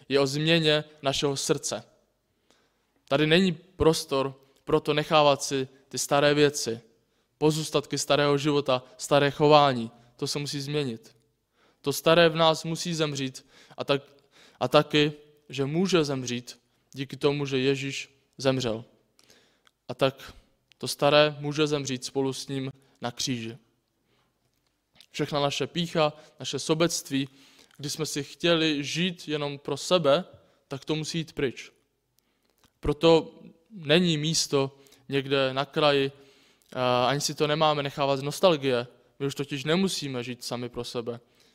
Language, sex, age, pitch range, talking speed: Czech, male, 20-39, 130-150 Hz, 130 wpm